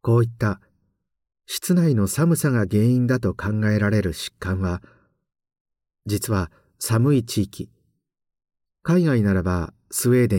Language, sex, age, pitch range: Japanese, male, 50-69, 90-125 Hz